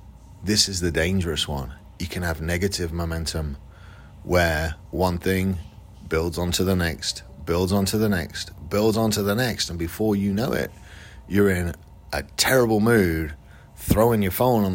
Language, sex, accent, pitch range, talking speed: English, male, British, 80-105 Hz, 160 wpm